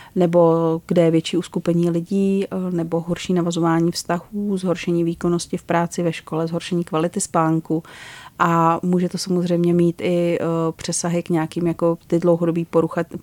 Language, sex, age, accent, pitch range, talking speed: Czech, female, 30-49, native, 165-175 Hz, 145 wpm